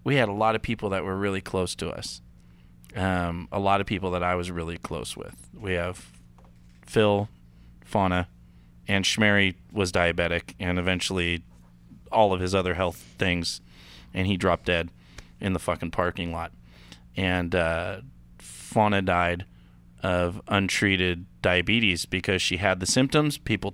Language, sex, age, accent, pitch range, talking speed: English, male, 30-49, American, 85-115 Hz, 155 wpm